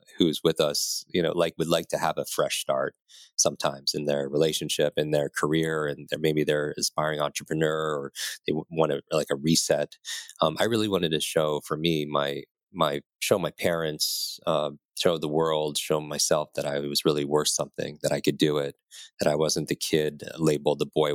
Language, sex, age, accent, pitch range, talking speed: English, male, 30-49, American, 75-80 Hz, 200 wpm